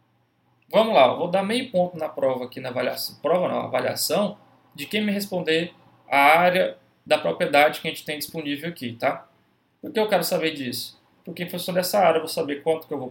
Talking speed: 220 wpm